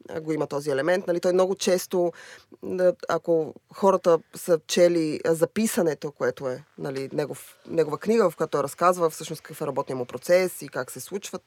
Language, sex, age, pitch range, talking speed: Bulgarian, female, 20-39, 160-190 Hz, 175 wpm